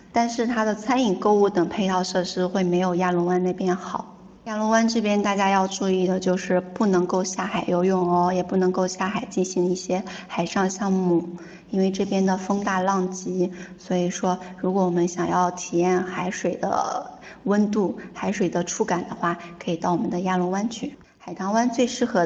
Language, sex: English, female